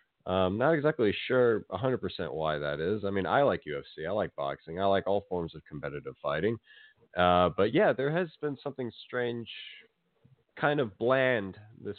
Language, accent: English, American